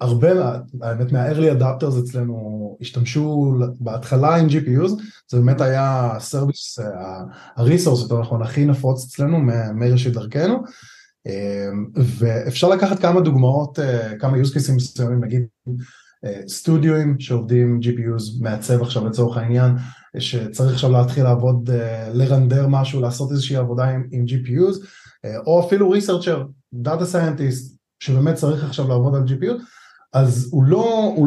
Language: Hebrew